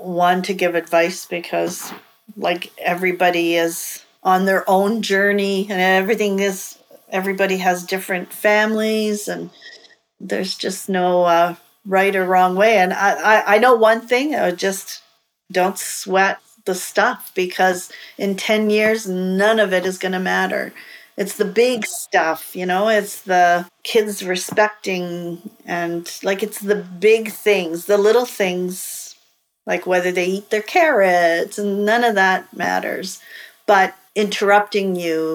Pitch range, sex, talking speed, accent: 185-215 Hz, female, 145 wpm, American